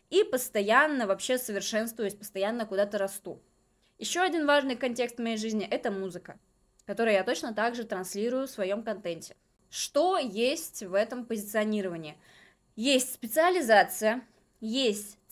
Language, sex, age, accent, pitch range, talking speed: Russian, female, 20-39, native, 210-260 Hz, 125 wpm